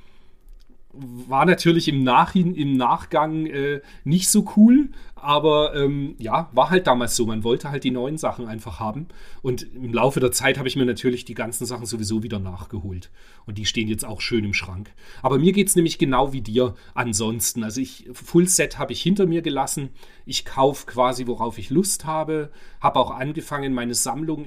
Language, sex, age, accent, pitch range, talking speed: German, male, 40-59, German, 115-145 Hz, 185 wpm